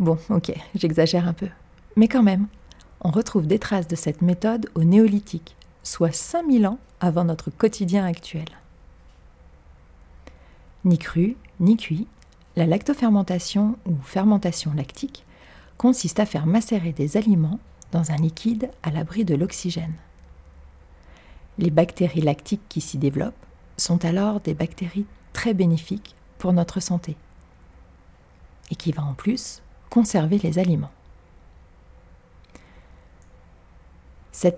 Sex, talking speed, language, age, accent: female, 120 wpm, French, 40-59, French